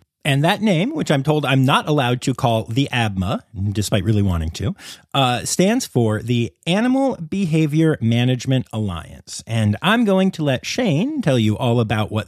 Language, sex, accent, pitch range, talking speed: English, male, American, 110-170 Hz, 175 wpm